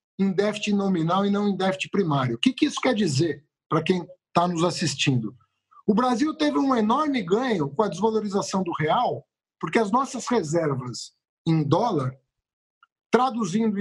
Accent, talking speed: Brazilian, 160 wpm